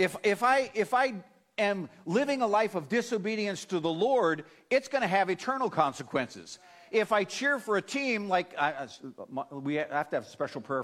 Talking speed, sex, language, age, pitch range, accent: 200 wpm, male, English, 50-69, 165-235 Hz, American